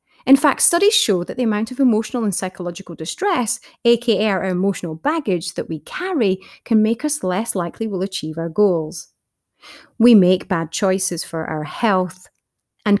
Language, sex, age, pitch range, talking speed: English, female, 30-49, 175-240 Hz, 165 wpm